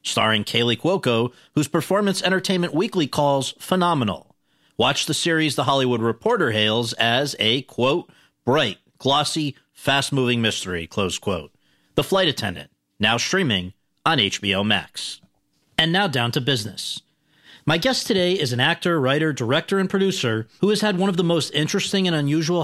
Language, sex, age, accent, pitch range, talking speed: English, male, 40-59, American, 125-180 Hz, 155 wpm